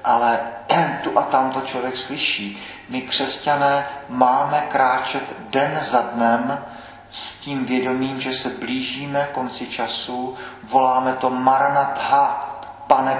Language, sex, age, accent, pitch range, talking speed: Czech, male, 40-59, native, 115-130 Hz, 115 wpm